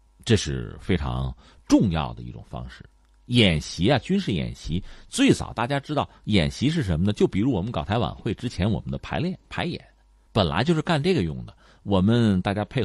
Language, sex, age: Chinese, male, 50-69